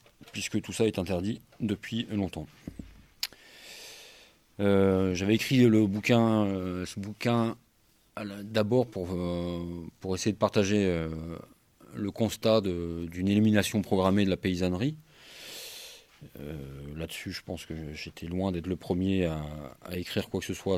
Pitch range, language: 90-110 Hz, French